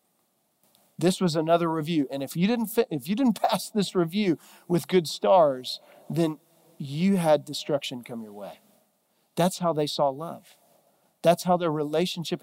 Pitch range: 150-200 Hz